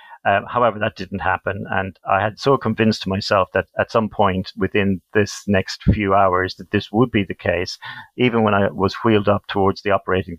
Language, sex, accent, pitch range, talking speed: English, male, British, 95-110 Hz, 200 wpm